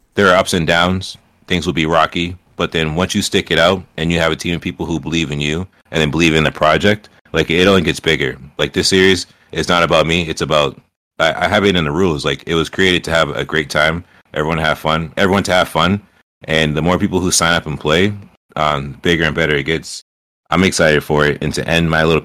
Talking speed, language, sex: 260 wpm, English, male